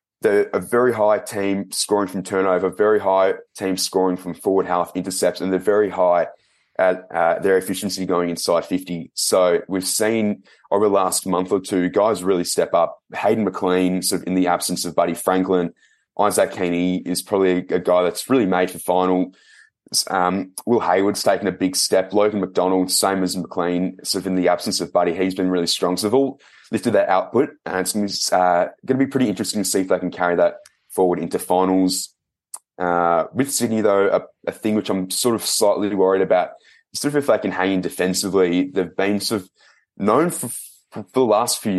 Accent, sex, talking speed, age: Australian, male, 200 wpm, 20-39